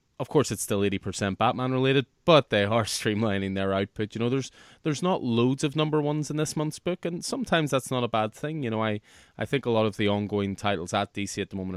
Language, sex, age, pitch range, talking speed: English, male, 20-39, 100-125 Hz, 250 wpm